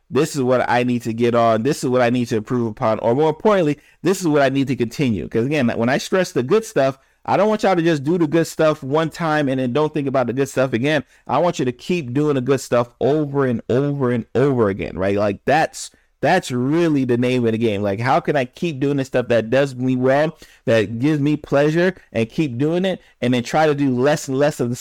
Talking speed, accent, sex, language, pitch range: 265 wpm, American, male, English, 120-155 Hz